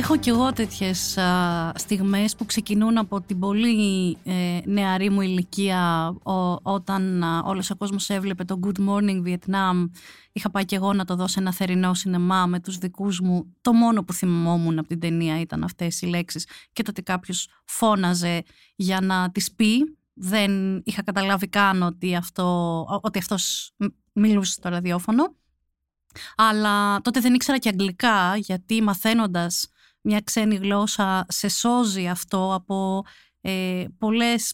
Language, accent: Greek, native